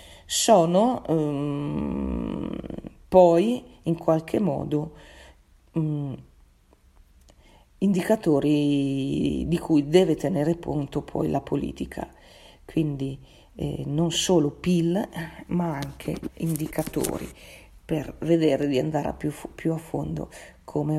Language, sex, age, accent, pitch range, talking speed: Italian, female, 40-59, native, 140-165 Hz, 95 wpm